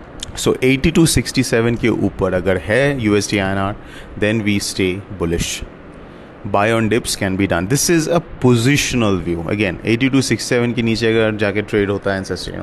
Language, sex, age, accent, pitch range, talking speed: English, male, 30-49, Indian, 95-120 Hz, 160 wpm